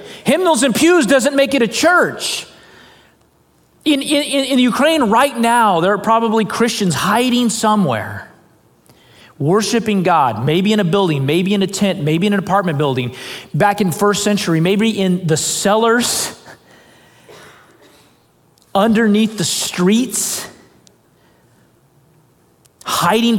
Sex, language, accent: male, English, American